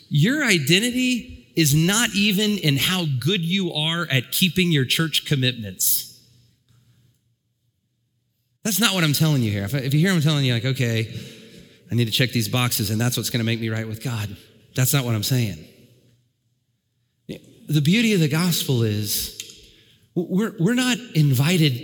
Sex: male